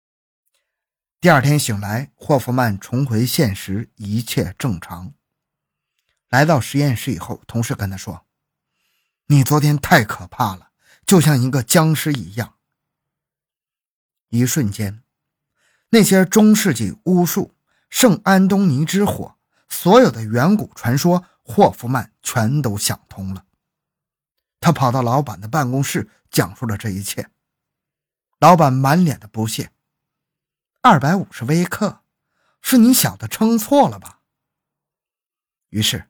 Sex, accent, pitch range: male, native, 110-160 Hz